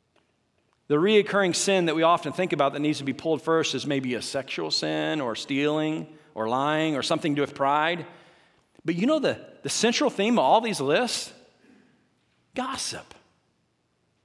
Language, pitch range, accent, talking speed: English, 145-210 Hz, American, 170 wpm